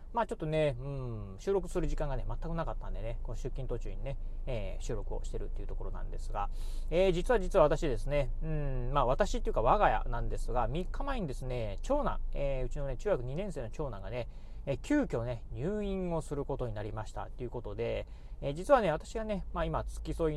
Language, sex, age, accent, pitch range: Japanese, male, 30-49, native, 115-180 Hz